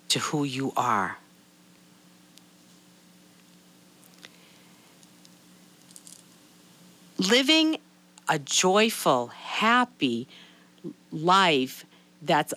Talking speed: 50 wpm